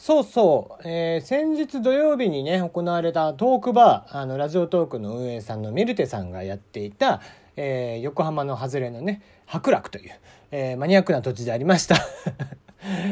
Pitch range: 120-195 Hz